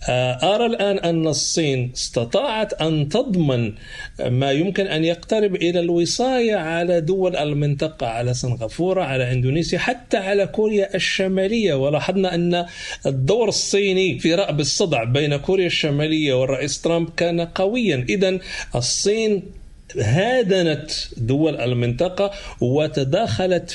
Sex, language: male, Arabic